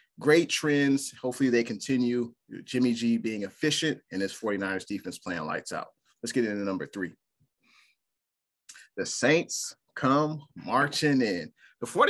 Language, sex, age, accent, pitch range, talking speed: English, male, 30-49, American, 95-125 Hz, 135 wpm